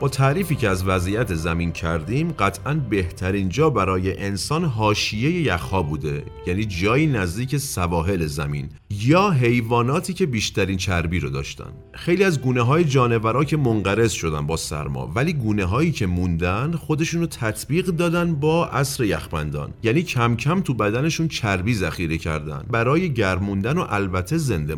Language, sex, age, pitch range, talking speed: Persian, male, 40-59, 85-135 Hz, 145 wpm